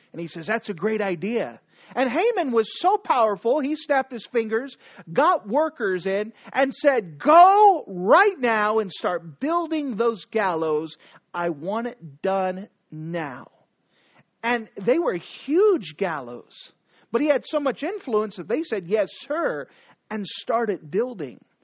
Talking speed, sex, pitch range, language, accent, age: 145 wpm, male, 200-275 Hz, English, American, 40-59